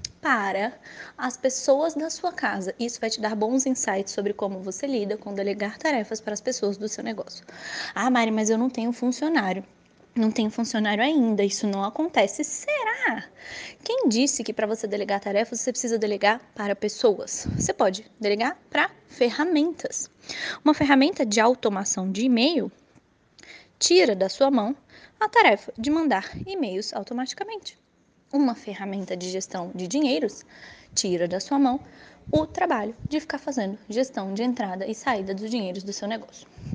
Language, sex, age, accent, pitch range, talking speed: Portuguese, female, 10-29, Brazilian, 205-275 Hz, 160 wpm